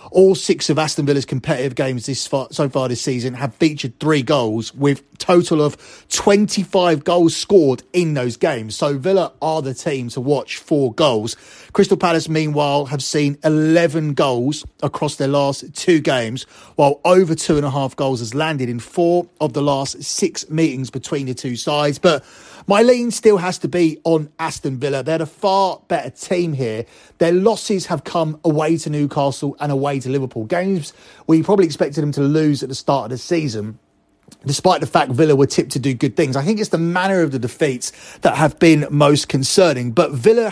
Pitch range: 135-170 Hz